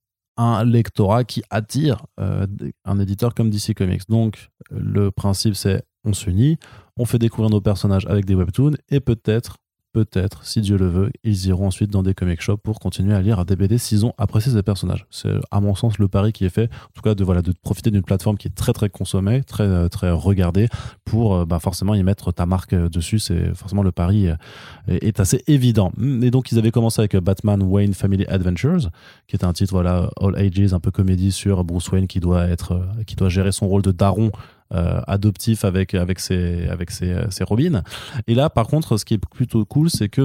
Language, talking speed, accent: French, 215 wpm, French